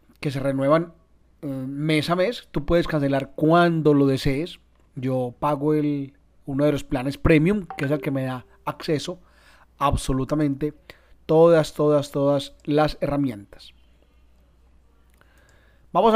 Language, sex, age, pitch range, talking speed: Spanish, male, 30-49, 135-165 Hz, 125 wpm